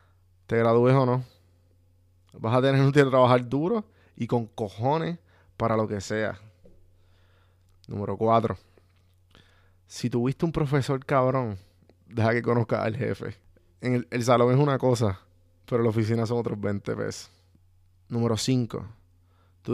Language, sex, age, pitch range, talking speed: Spanish, male, 20-39, 90-130 Hz, 145 wpm